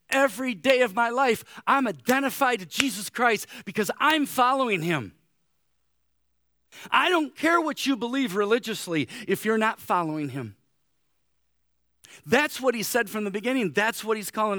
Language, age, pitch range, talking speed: English, 40-59, 150-220 Hz, 150 wpm